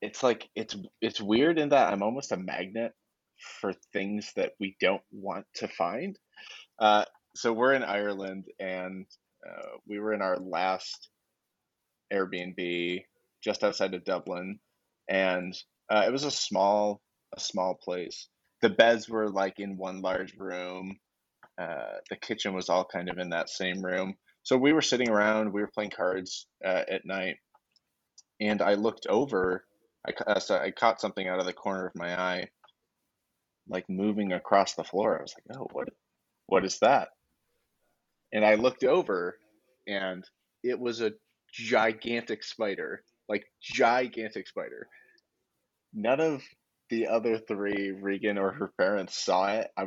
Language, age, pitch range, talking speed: English, 20-39, 95-115 Hz, 155 wpm